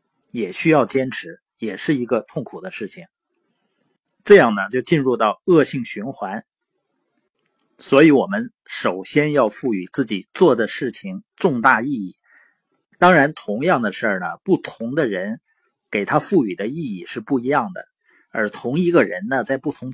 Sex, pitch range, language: male, 120-190 Hz, Chinese